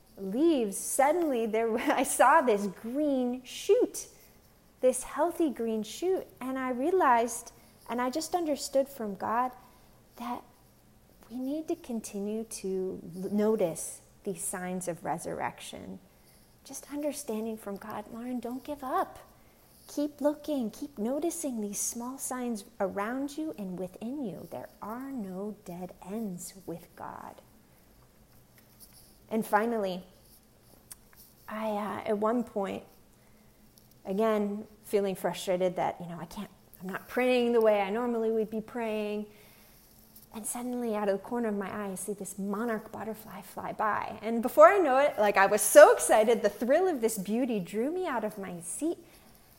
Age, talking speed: 30-49, 145 wpm